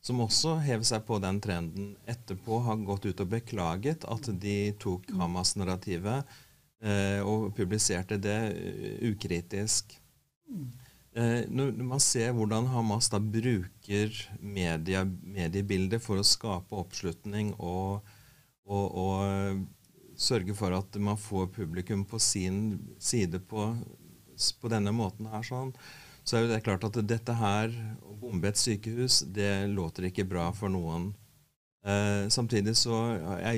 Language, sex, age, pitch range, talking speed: English, male, 40-59, 95-115 Hz, 125 wpm